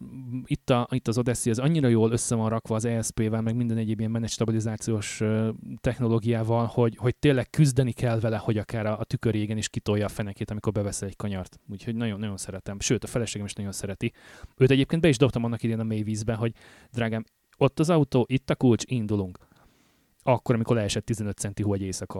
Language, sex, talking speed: Hungarian, male, 205 wpm